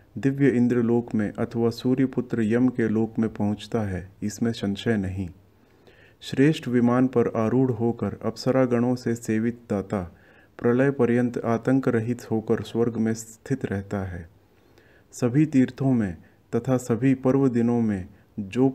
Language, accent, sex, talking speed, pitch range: Hindi, native, male, 140 wpm, 105-125 Hz